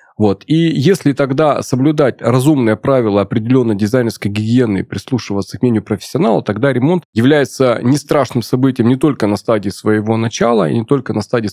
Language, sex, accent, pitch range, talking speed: Russian, male, native, 110-135 Hz, 165 wpm